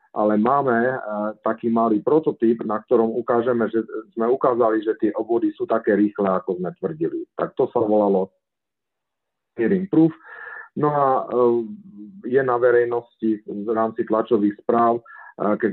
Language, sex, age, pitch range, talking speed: Slovak, male, 50-69, 95-115 Hz, 135 wpm